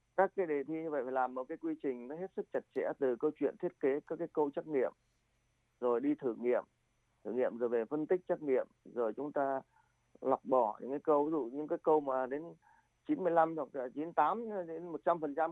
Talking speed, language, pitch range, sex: 215 wpm, Vietnamese, 130-165 Hz, male